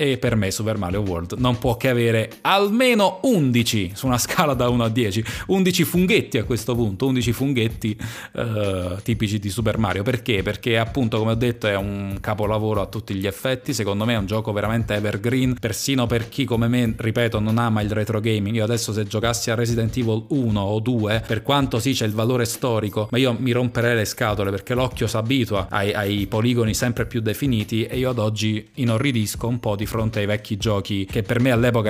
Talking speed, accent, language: 210 wpm, native, Italian